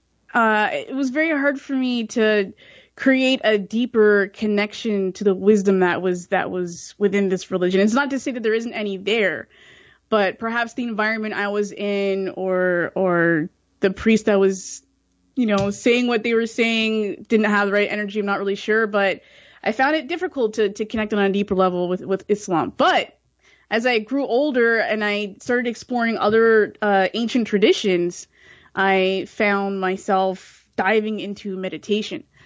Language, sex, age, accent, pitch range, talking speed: English, female, 20-39, American, 195-240 Hz, 175 wpm